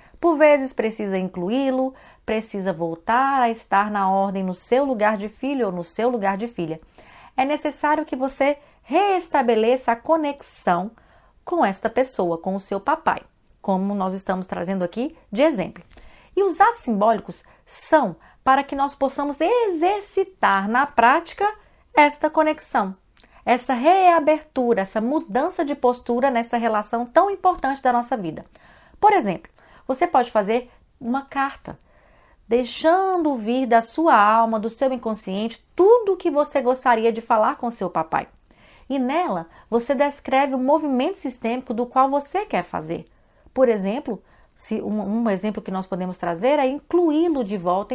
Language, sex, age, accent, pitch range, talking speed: Portuguese, female, 40-59, Brazilian, 210-295 Hz, 150 wpm